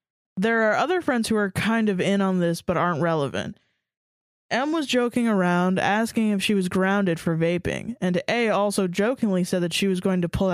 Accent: American